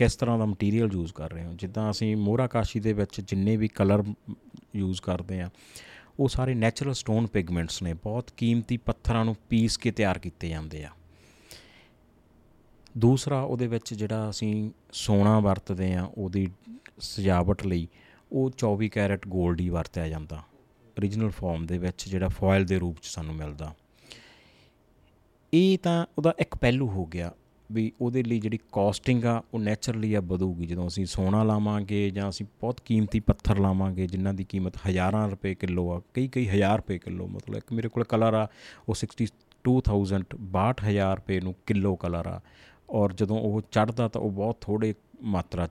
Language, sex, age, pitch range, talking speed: Punjabi, male, 30-49, 95-115 Hz, 145 wpm